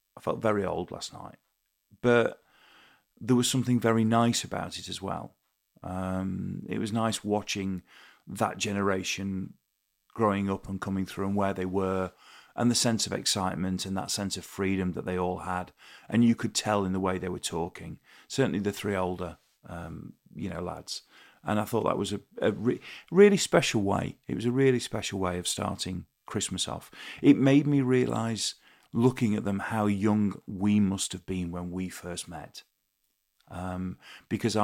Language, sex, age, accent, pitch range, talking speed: English, male, 40-59, British, 95-105 Hz, 180 wpm